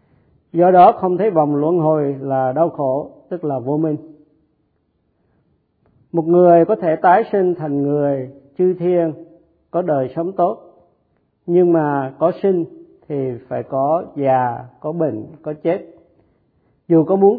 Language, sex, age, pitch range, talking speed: Vietnamese, male, 50-69, 135-170 Hz, 150 wpm